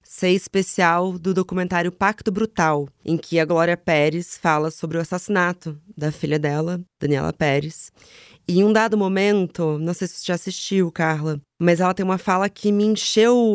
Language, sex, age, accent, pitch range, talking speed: Portuguese, female, 20-39, Brazilian, 165-205 Hz, 175 wpm